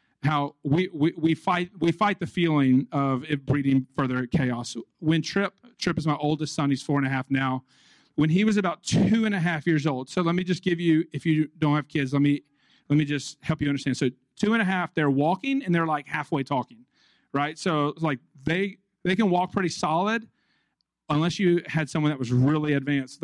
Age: 40-59